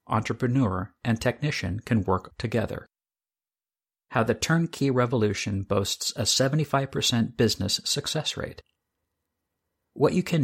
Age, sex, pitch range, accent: 50-69, male, 95-125 Hz, American